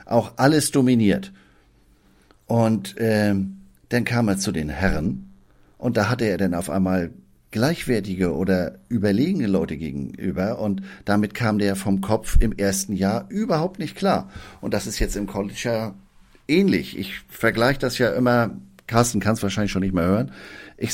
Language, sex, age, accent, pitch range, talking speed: German, male, 50-69, German, 95-120 Hz, 165 wpm